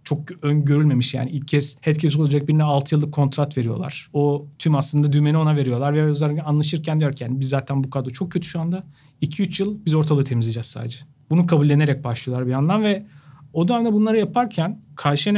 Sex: male